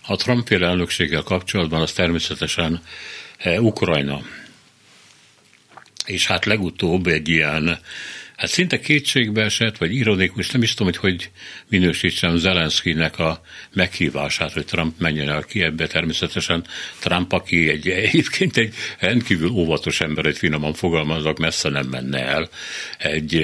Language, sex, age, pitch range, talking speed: Hungarian, male, 60-79, 80-100 Hz, 130 wpm